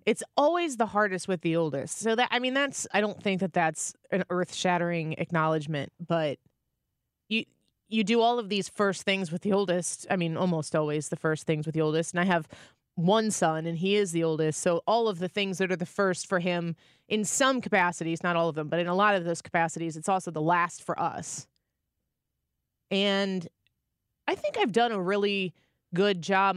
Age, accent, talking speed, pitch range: 20-39, American, 210 wpm, 165-200 Hz